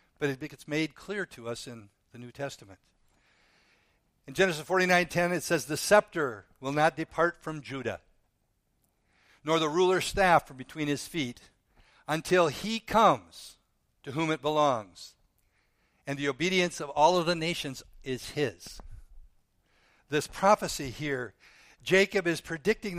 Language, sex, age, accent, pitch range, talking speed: English, male, 60-79, American, 125-165 Hz, 145 wpm